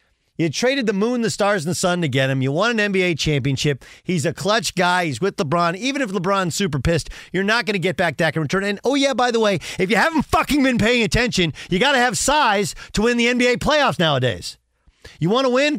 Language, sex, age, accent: English, male, 40-59, American